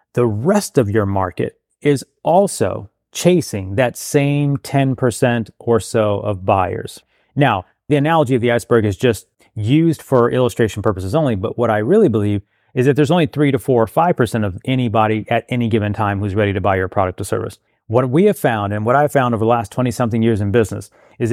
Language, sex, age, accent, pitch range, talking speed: English, male, 30-49, American, 110-145 Hz, 205 wpm